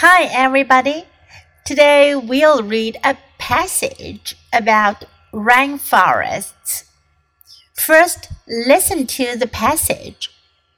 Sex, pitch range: female, 215-305 Hz